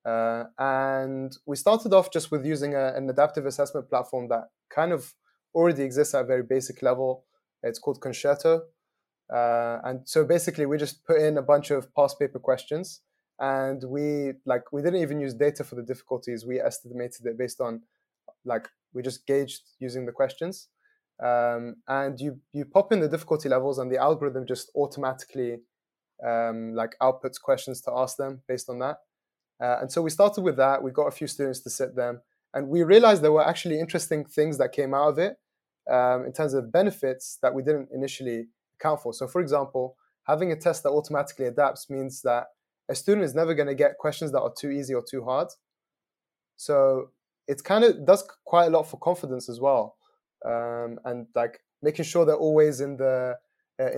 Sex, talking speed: male, 195 wpm